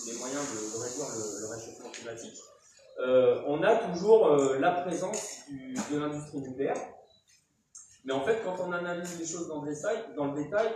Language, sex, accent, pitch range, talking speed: French, male, French, 135-185 Hz, 190 wpm